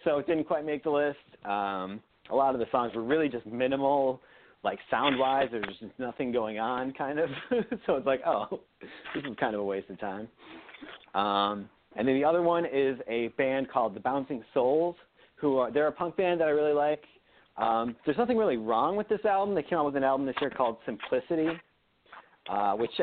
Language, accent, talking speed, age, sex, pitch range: English, American, 210 wpm, 30-49, male, 115-150 Hz